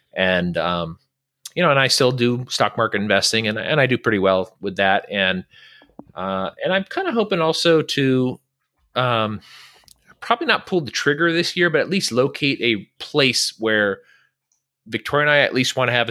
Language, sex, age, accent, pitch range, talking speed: English, male, 30-49, American, 100-135 Hz, 190 wpm